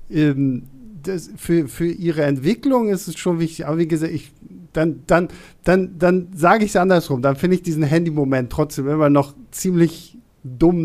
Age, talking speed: 50-69, 160 wpm